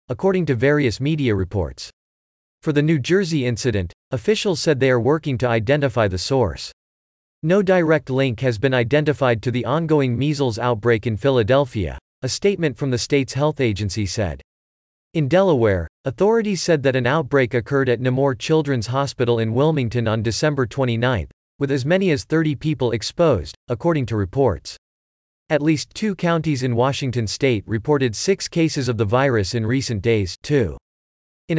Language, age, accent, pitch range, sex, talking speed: English, 40-59, American, 115-150 Hz, male, 160 wpm